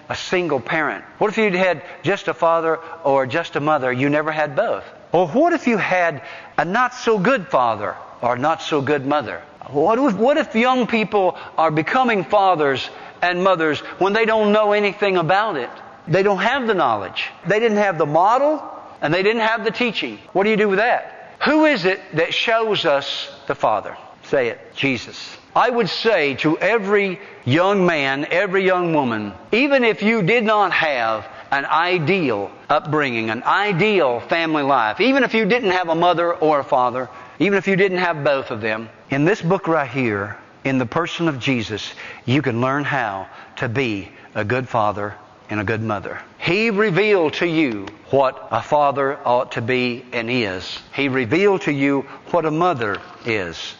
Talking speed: 185 wpm